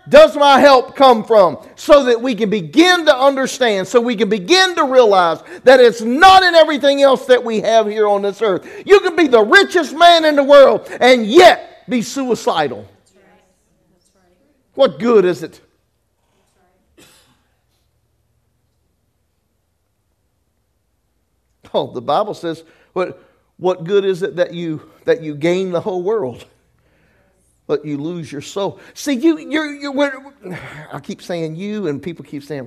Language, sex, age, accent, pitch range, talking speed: English, male, 50-69, American, 180-285 Hz, 150 wpm